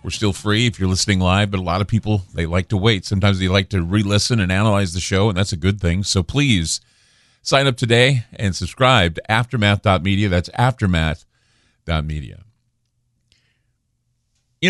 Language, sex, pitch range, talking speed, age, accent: English, male, 95-120 Hz, 170 wpm, 40-59, American